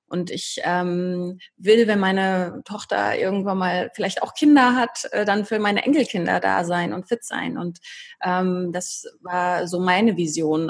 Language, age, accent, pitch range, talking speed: German, 30-49, German, 180-225 Hz, 170 wpm